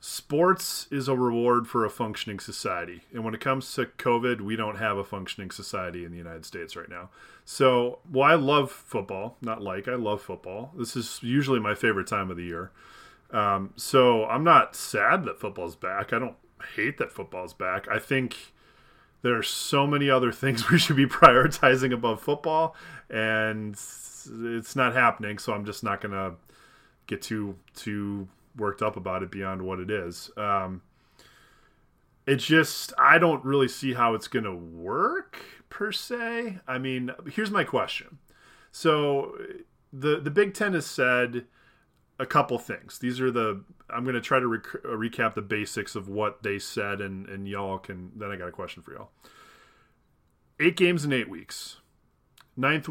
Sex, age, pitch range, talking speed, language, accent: male, 30-49, 105-140 Hz, 175 wpm, English, American